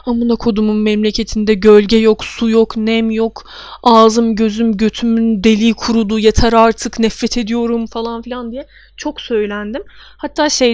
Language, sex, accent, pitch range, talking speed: Turkish, female, native, 215-240 Hz, 140 wpm